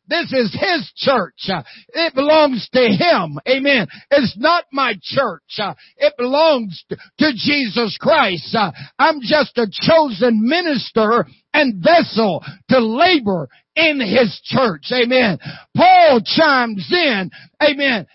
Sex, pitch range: male, 220-310 Hz